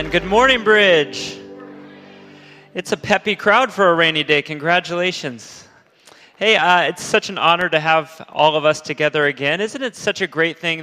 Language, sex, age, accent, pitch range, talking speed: English, male, 30-49, American, 145-175 Hz, 170 wpm